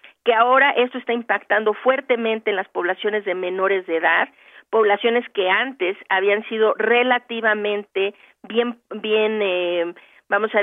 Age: 40-59